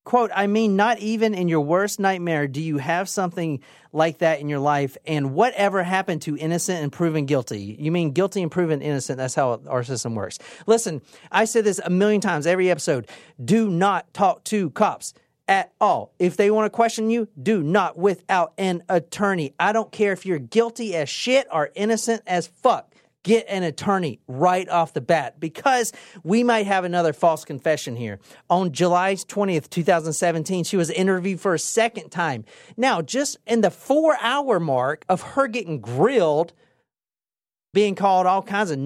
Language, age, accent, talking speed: English, 40-59, American, 180 wpm